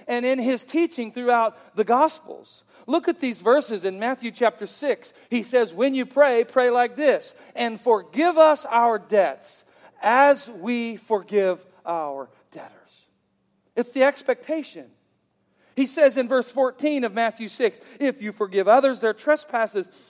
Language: English